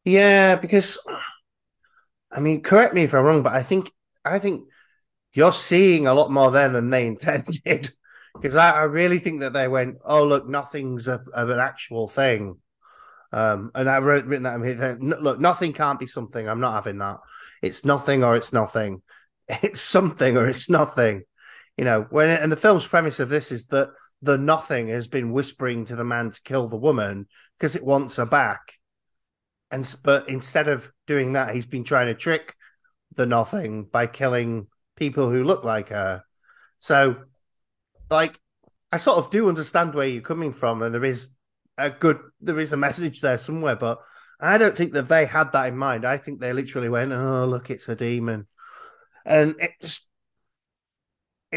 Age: 30-49